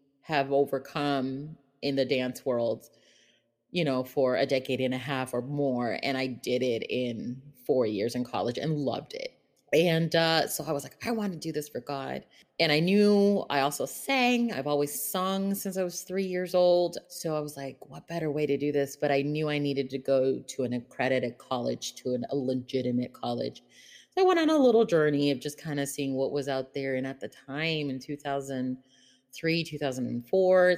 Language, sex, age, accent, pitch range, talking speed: English, female, 30-49, American, 130-160 Hz, 205 wpm